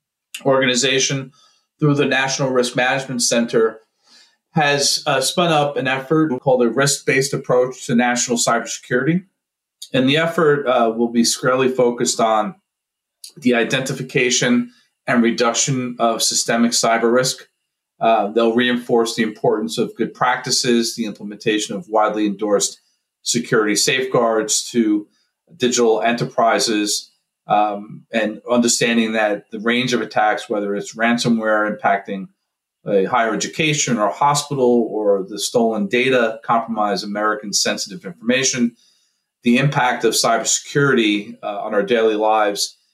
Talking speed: 125 wpm